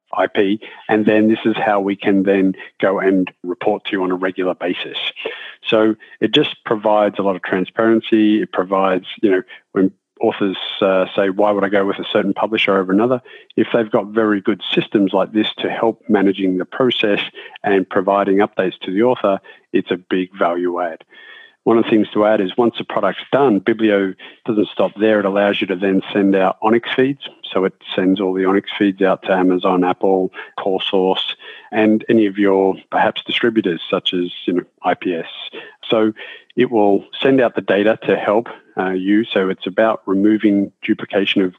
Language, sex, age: English, male, 50-69